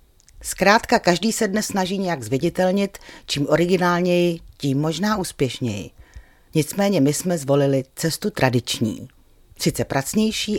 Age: 40-59